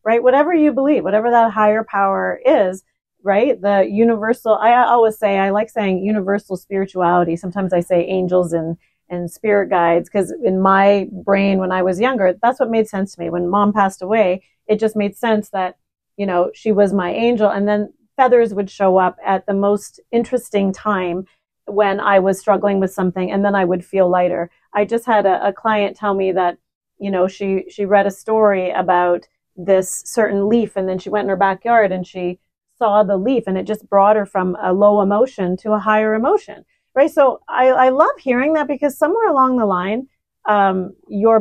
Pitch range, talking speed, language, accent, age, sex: 190-225 Hz, 200 wpm, English, American, 40-59, female